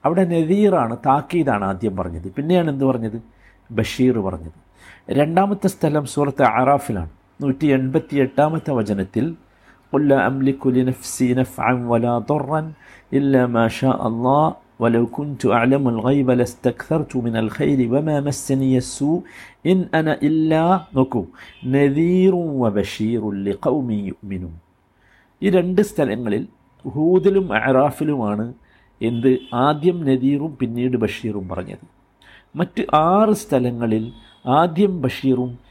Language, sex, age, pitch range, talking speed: Malayalam, male, 50-69, 110-150 Hz, 110 wpm